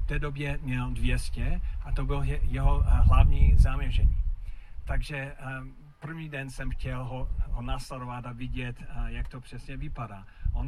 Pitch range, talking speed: 110-140 Hz, 155 wpm